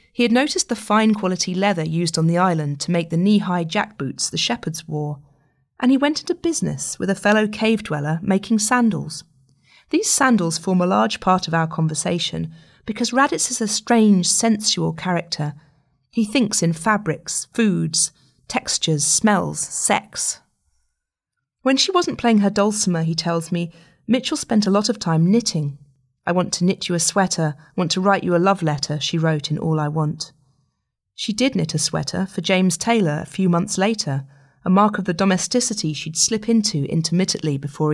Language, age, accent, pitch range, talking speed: English, 30-49, British, 160-215 Hz, 180 wpm